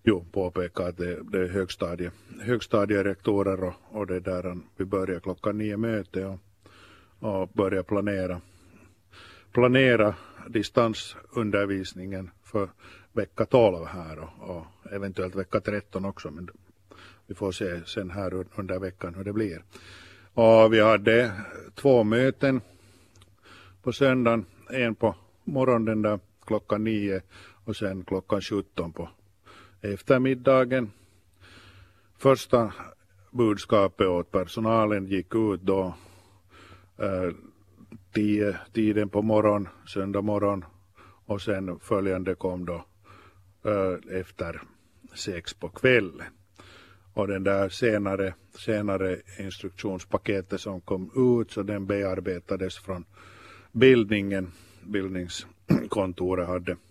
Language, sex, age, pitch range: Swedish, male, 50-69, 95-105 Hz